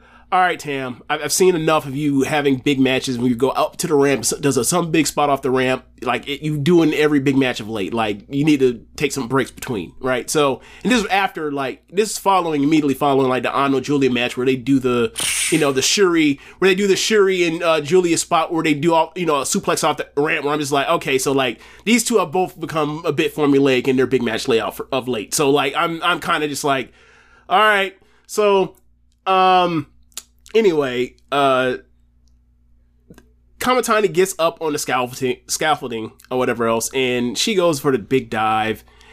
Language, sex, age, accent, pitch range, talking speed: English, male, 30-49, American, 125-170 Hz, 220 wpm